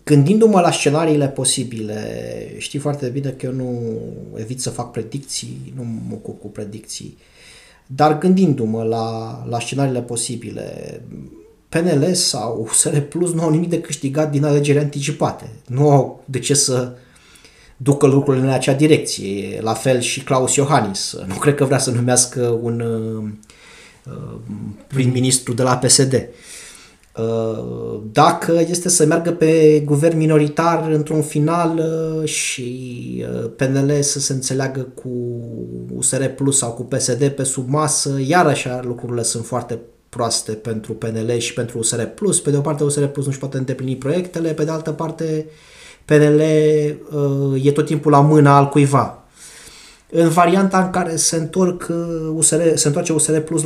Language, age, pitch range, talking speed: Romanian, 20-39, 120-155 Hz, 145 wpm